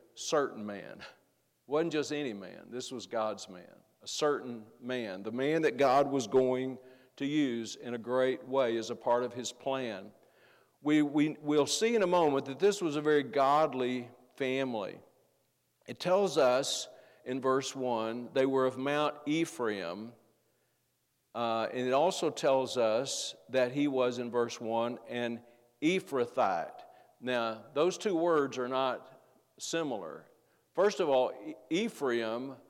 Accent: American